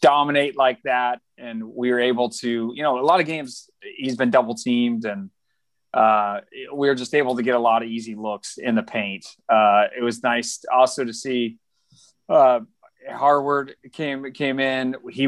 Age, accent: 30-49, American